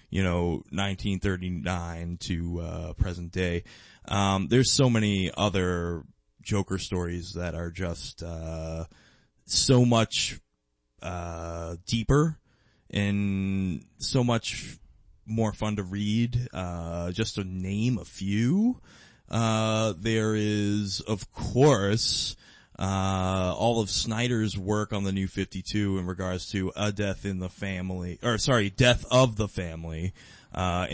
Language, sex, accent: English, male, American